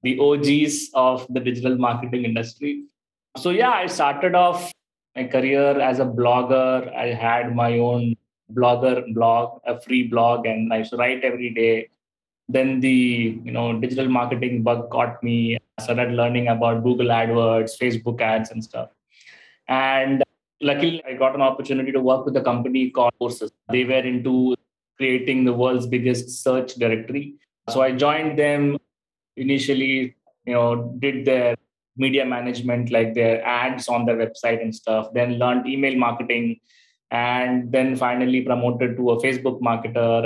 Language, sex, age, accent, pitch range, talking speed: English, male, 20-39, Indian, 120-130 Hz, 155 wpm